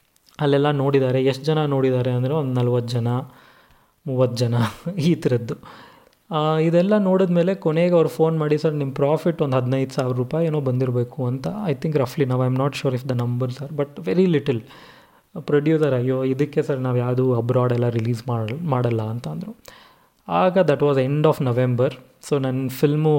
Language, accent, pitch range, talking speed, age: Kannada, native, 125-150 Hz, 165 wpm, 20-39